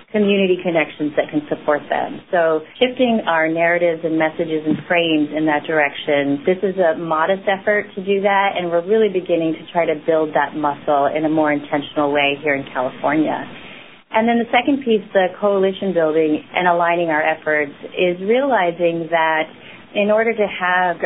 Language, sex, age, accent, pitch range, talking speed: English, female, 30-49, American, 150-180 Hz, 175 wpm